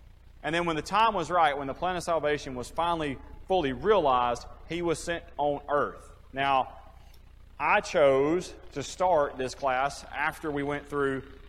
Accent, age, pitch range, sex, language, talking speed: American, 30-49, 100-165 Hz, male, English, 165 wpm